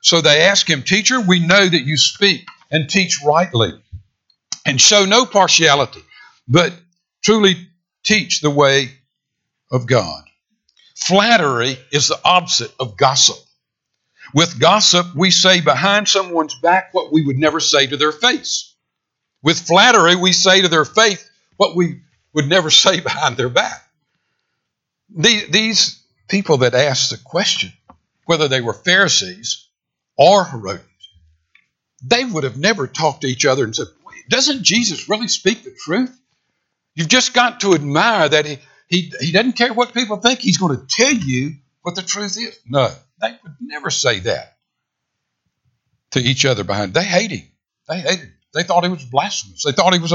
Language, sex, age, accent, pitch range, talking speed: English, male, 60-79, American, 135-200 Hz, 165 wpm